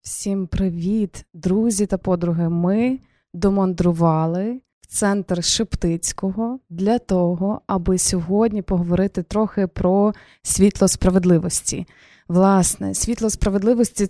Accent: native